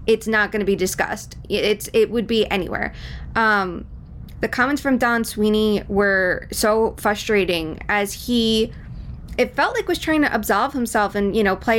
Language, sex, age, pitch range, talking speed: English, female, 20-39, 205-275 Hz, 175 wpm